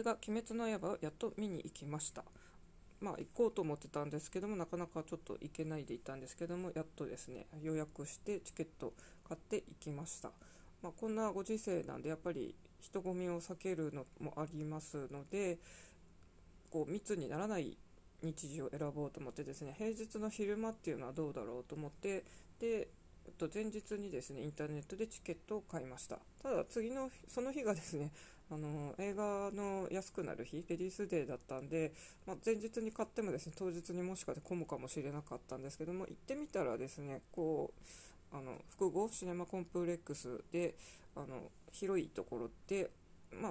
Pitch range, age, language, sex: 150-205 Hz, 20-39, Japanese, female